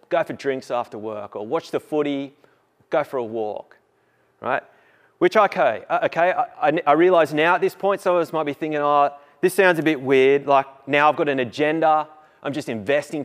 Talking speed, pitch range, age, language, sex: 210 wpm, 135-185 Hz, 30-49, English, male